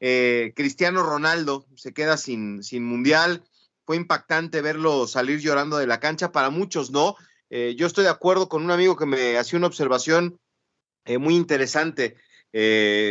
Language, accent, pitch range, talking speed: Spanish, Mexican, 140-180 Hz, 165 wpm